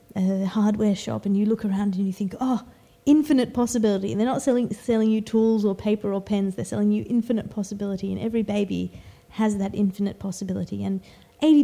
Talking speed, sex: 195 wpm, female